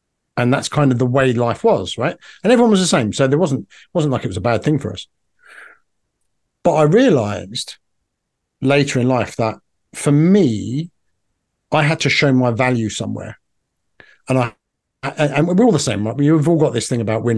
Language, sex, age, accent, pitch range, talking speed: English, male, 50-69, British, 110-145 Hz, 200 wpm